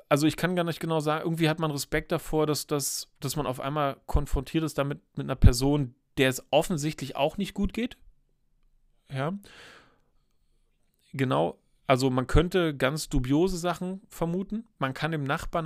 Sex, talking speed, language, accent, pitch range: male, 165 wpm, German, German, 135-180 Hz